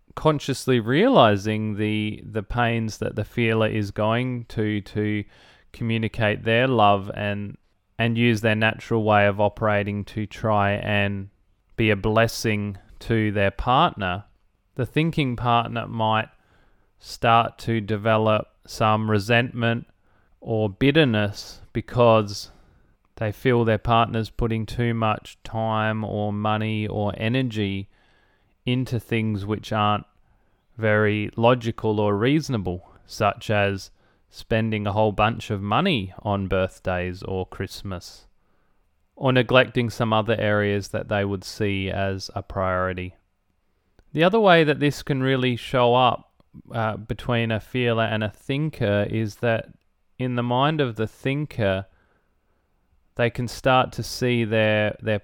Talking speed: 130 wpm